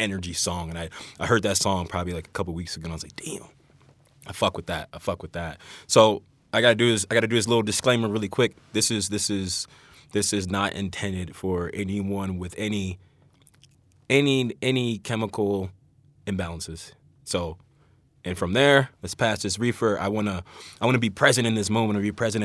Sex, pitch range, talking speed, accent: male, 90-115 Hz, 205 wpm, American